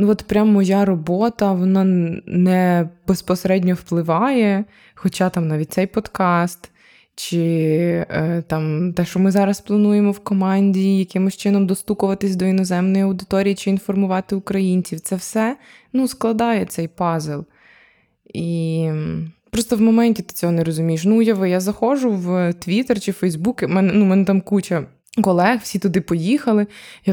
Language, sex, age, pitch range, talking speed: Ukrainian, female, 20-39, 175-205 Hz, 145 wpm